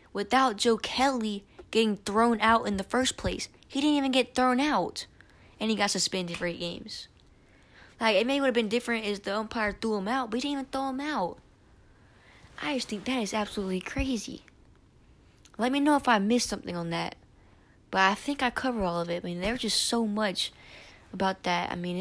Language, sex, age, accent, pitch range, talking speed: English, female, 20-39, American, 190-245 Hz, 205 wpm